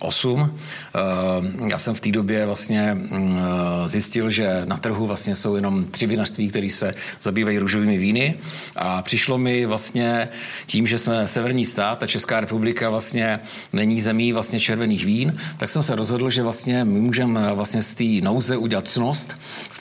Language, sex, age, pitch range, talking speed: Slovak, male, 50-69, 110-130 Hz, 150 wpm